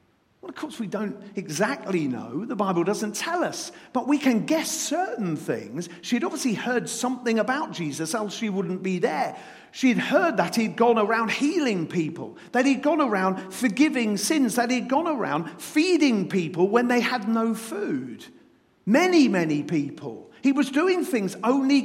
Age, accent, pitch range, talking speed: 50-69, British, 220-295 Hz, 170 wpm